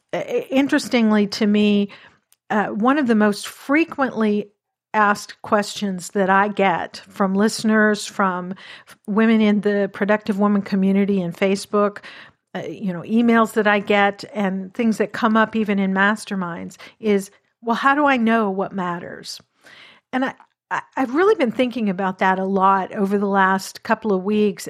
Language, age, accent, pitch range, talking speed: English, 50-69, American, 190-220 Hz, 155 wpm